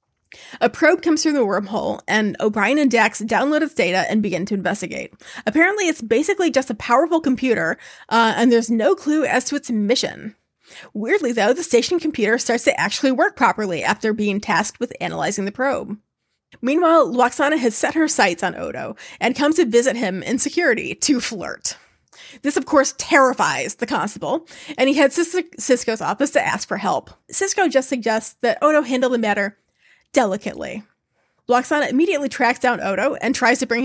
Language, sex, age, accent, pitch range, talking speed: English, female, 30-49, American, 225-295 Hz, 180 wpm